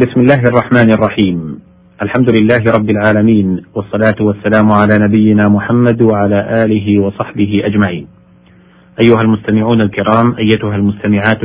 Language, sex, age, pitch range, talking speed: Arabic, male, 40-59, 100-120 Hz, 115 wpm